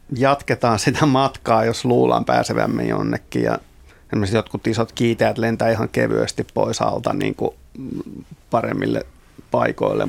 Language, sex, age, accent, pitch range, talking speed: Finnish, male, 30-49, native, 110-125 Hz, 115 wpm